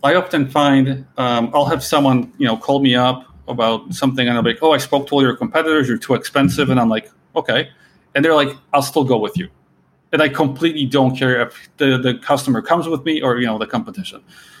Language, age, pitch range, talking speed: English, 30-49, 120-145 Hz, 240 wpm